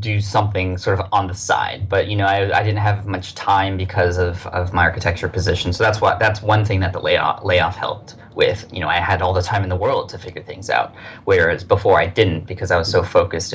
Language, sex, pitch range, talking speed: English, male, 90-110 Hz, 255 wpm